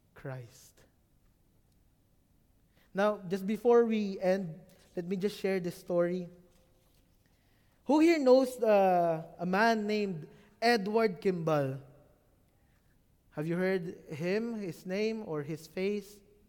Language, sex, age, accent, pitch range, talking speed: English, male, 20-39, Filipino, 170-235 Hz, 110 wpm